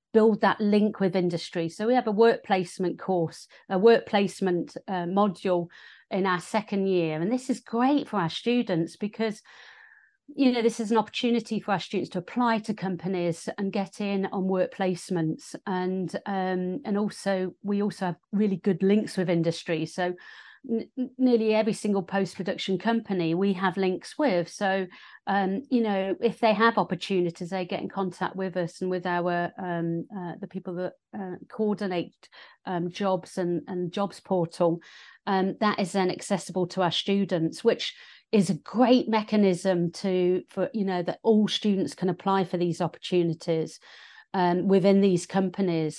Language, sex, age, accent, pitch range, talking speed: English, female, 40-59, British, 180-215 Hz, 170 wpm